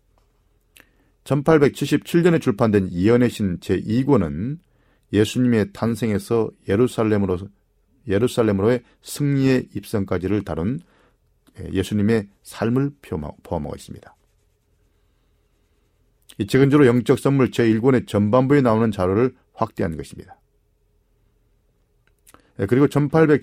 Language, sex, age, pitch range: Korean, male, 40-59, 100-135 Hz